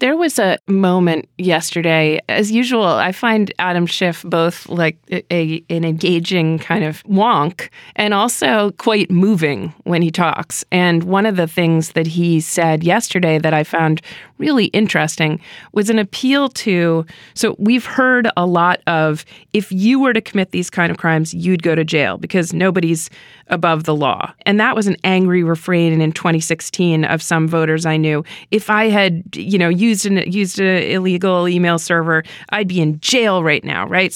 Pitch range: 165-215 Hz